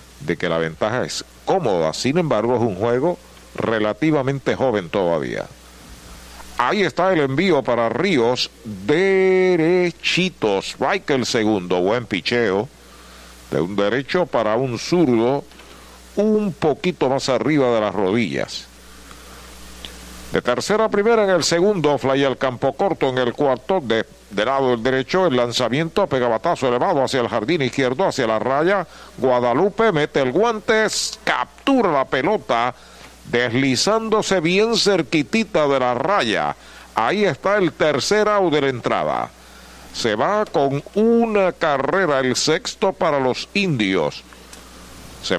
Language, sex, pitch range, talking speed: Spanish, male, 115-185 Hz, 130 wpm